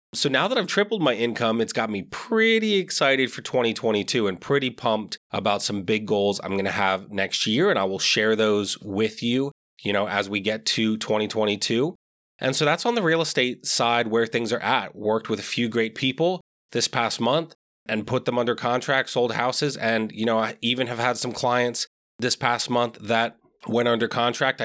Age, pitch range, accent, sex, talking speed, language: 30-49, 110-135 Hz, American, male, 205 wpm, English